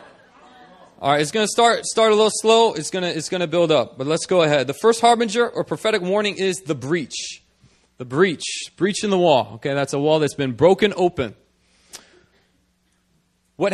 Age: 30-49